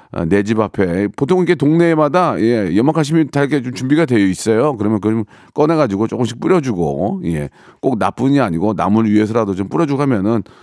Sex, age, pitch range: male, 40-59, 100-150 Hz